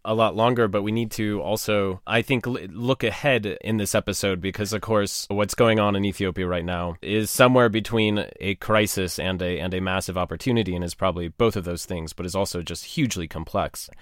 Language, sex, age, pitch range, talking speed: English, male, 30-49, 95-115 Hz, 210 wpm